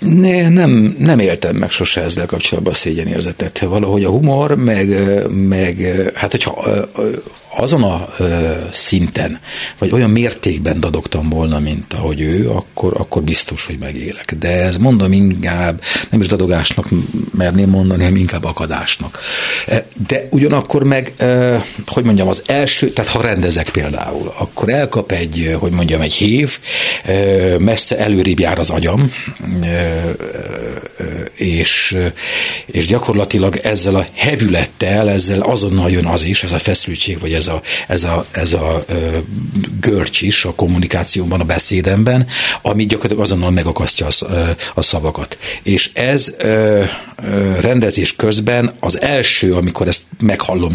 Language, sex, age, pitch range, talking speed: Hungarian, male, 60-79, 85-115 Hz, 135 wpm